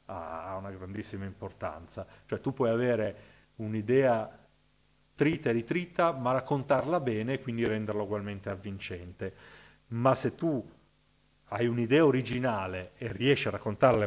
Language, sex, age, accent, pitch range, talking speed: Italian, male, 40-59, native, 105-130 Hz, 130 wpm